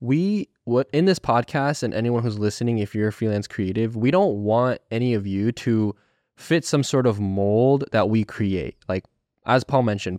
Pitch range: 105-130 Hz